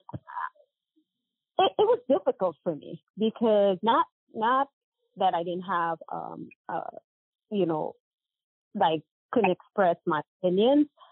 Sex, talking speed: female, 120 wpm